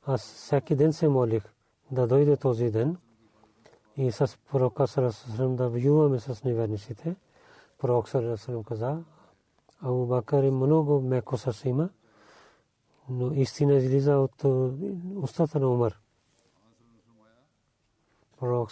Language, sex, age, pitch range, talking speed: Bulgarian, male, 40-59, 115-135 Hz, 110 wpm